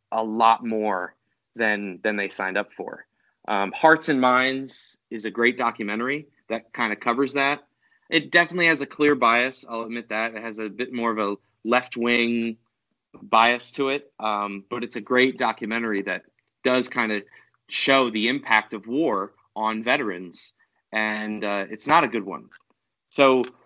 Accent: American